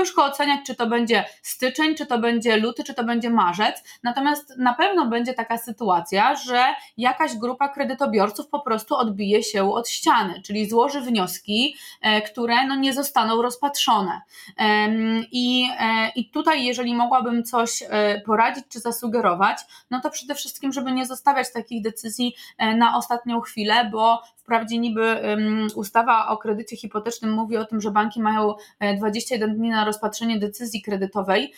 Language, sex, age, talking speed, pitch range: Polish, female, 20-39, 145 wpm, 215-245 Hz